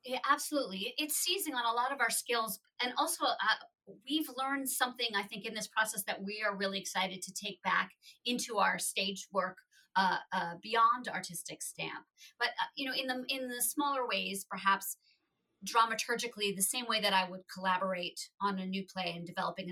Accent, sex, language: American, female, English